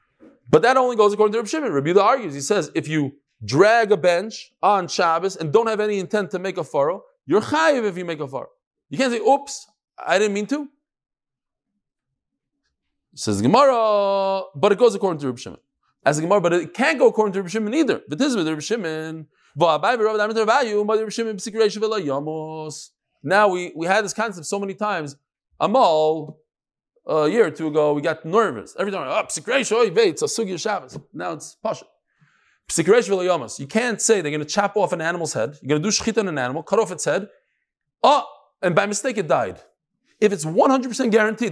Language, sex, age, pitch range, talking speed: English, male, 20-39, 160-235 Hz, 185 wpm